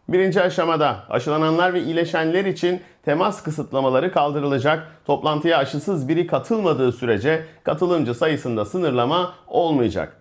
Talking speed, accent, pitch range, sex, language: 105 wpm, native, 135-170 Hz, male, Turkish